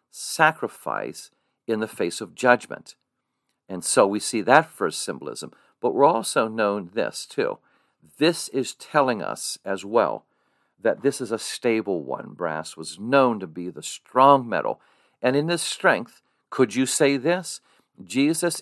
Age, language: 50-69, English